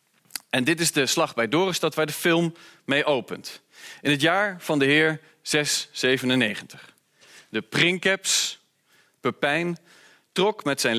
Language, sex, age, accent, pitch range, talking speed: Dutch, male, 40-59, Dutch, 120-160 Hz, 135 wpm